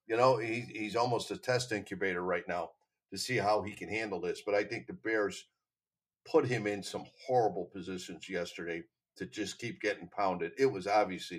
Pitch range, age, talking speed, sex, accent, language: 105-135 Hz, 50-69, 195 wpm, male, American, English